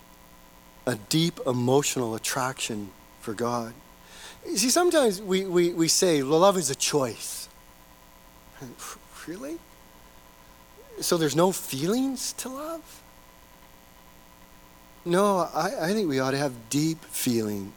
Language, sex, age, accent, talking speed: English, male, 40-59, American, 115 wpm